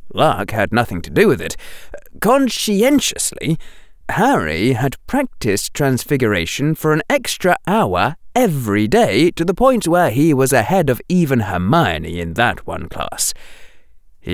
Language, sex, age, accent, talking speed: English, male, 30-49, British, 140 wpm